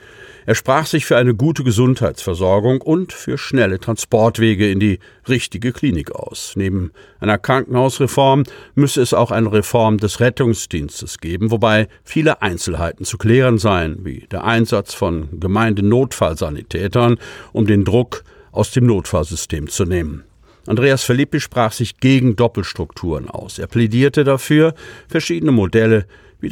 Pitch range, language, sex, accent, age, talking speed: 100-130 Hz, German, male, German, 50-69, 135 wpm